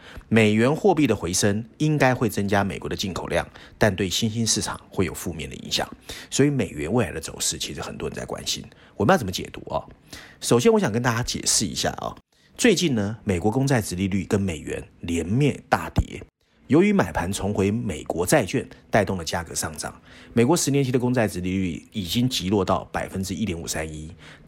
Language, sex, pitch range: Chinese, male, 90-125 Hz